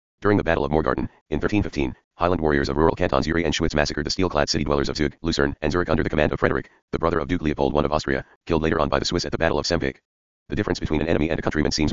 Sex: male